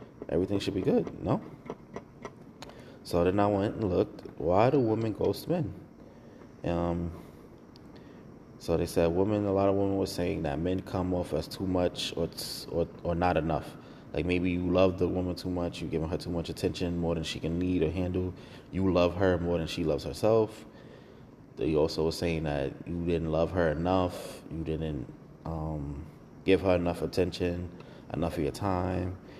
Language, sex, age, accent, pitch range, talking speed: English, male, 20-39, American, 80-95 Hz, 190 wpm